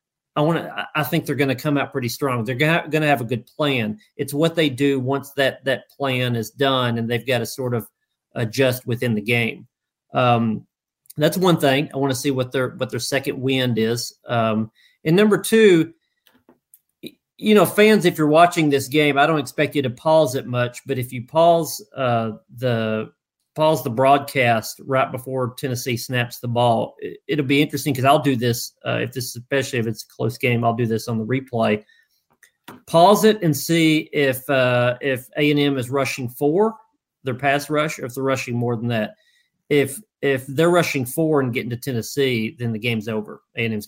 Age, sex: 40-59, male